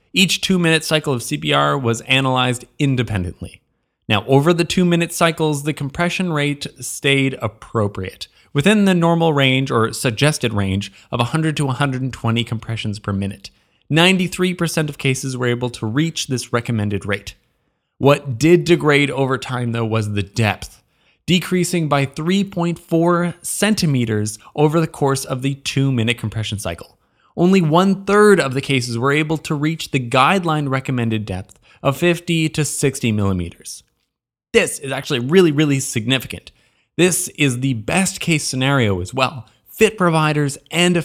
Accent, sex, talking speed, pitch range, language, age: American, male, 145 wpm, 120-170 Hz, English, 20-39